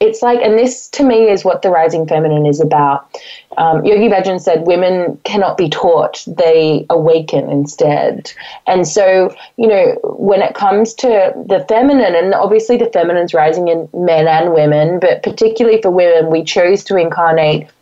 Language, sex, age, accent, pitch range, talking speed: English, female, 20-39, Australian, 165-240 Hz, 170 wpm